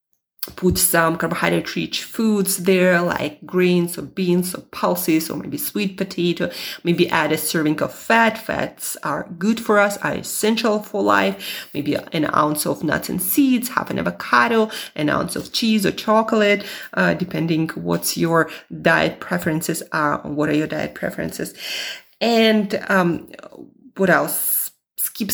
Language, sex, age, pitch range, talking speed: English, female, 30-49, 160-200 Hz, 155 wpm